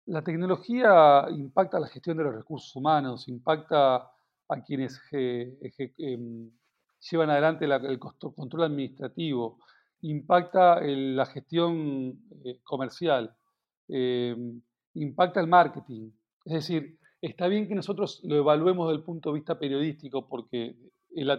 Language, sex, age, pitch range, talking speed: Spanish, male, 40-59, 135-175 Hz, 115 wpm